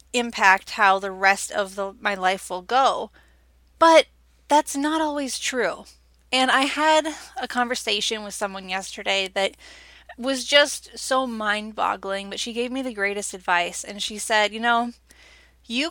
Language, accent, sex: English, American, female